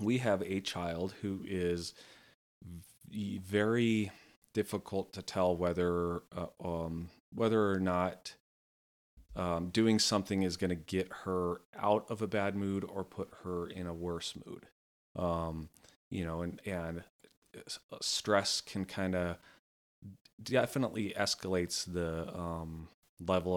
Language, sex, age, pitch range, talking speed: English, male, 30-49, 85-100 Hz, 125 wpm